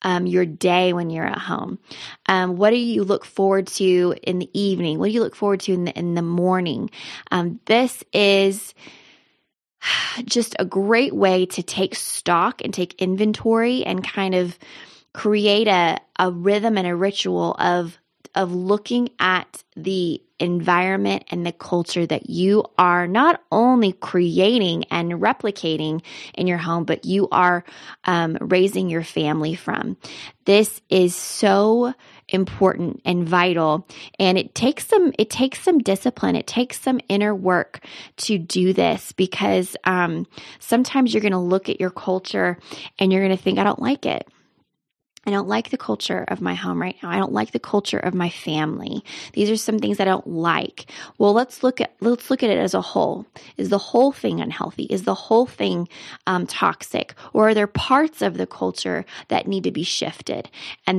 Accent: American